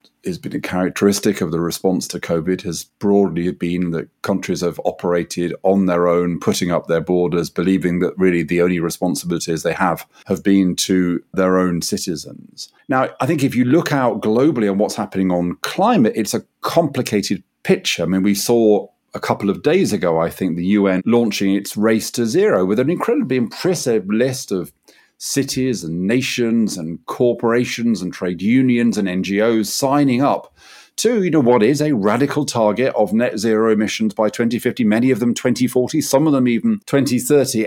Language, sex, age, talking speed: English, male, 40-59, 180 wpm